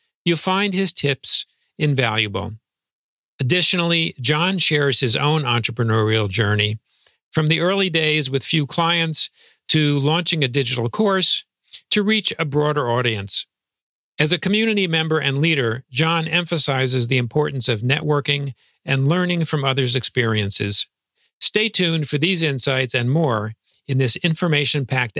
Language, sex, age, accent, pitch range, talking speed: English, male, 50-69, American, 115-150 Hz, 135 wpm